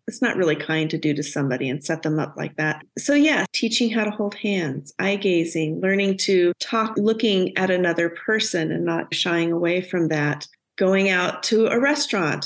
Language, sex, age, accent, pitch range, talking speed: English, female, 40-59, American, 165-195 Hz, 195 wpm